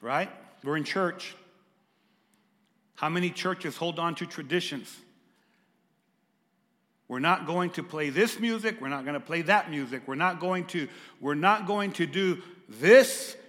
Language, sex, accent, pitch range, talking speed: English, male, American, 190-250 Hz, 155 wpm